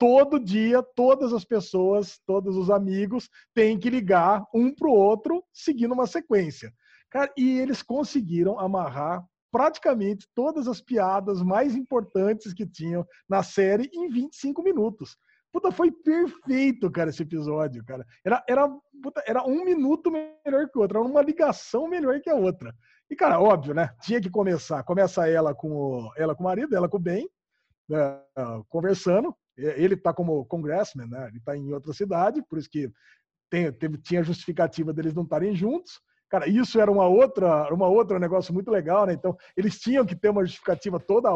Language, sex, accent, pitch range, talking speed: Portuguese, male, Brazilian, 175-255 Hz, 175 wpm